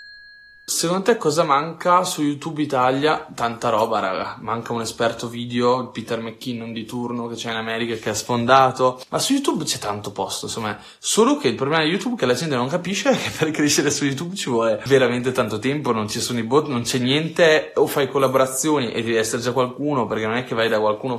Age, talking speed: 20-39, 225 wpm